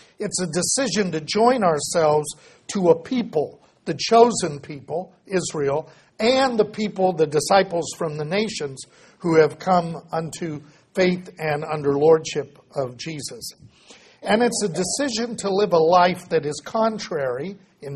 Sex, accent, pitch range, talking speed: male, American, 160-200 Hz, 145 wpm